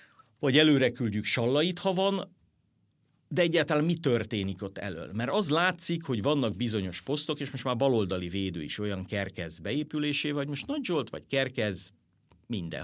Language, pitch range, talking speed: Hungarian, 95-135 Hz, 165 wpm